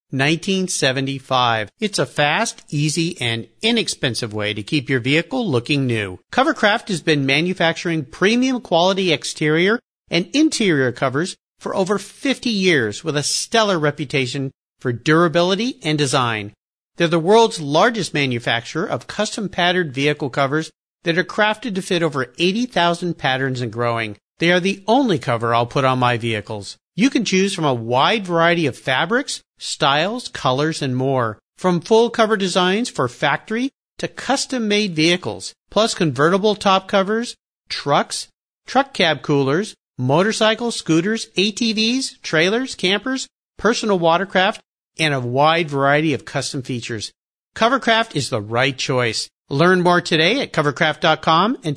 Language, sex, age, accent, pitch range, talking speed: English, male, 50-69, American, 135-210 Hz, 140 wpm